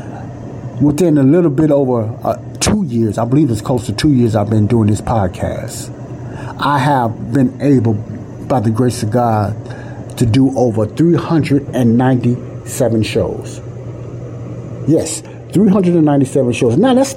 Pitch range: 110-140 Hz